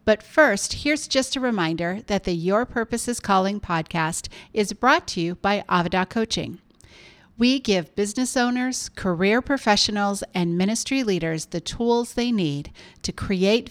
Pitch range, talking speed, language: 180-225 Hz, 155 wpm, English